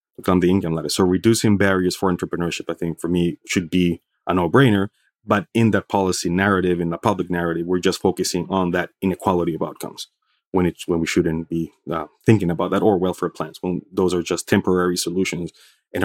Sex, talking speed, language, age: male, 200 wpm, English, 30-49